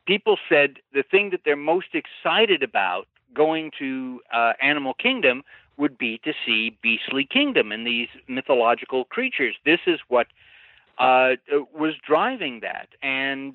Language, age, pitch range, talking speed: English, 50-69, 125-180 Hz, 140 wpm